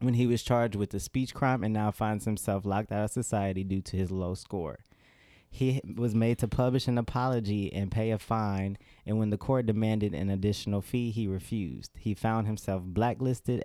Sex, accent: male, American